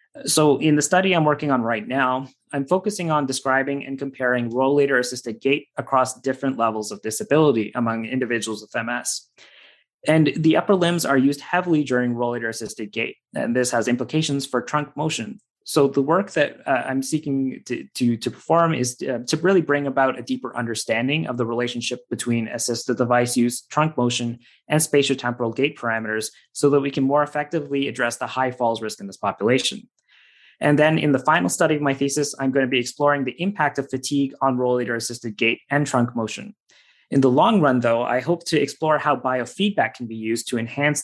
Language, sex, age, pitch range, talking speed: English, male, 20-39, 120-150 Hz, 195 wpm